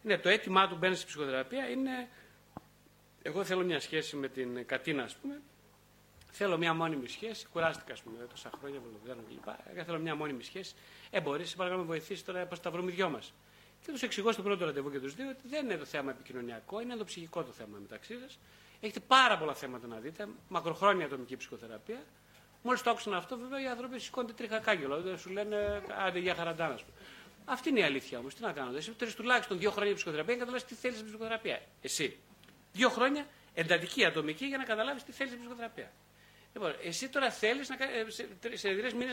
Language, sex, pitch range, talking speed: Greek, male, 150-230 Hz, 185 wpm